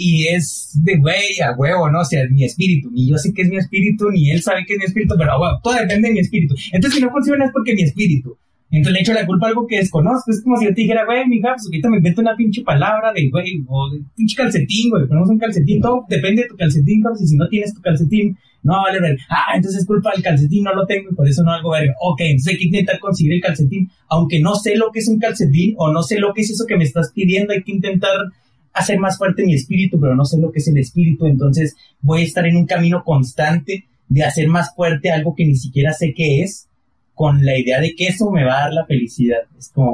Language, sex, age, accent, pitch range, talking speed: Spanish, male, 30-49, Mexican, 145-200 Hz, 280 wpm